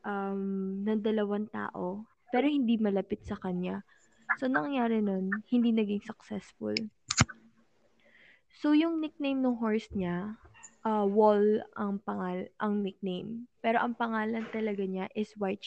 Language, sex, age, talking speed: Filipino, female, 20-39, 130 wpm